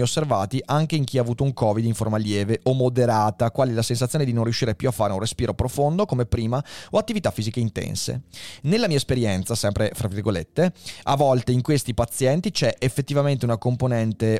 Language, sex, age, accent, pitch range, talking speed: Italian, male, 30-49, native, 110-140 Hz, 190 wpm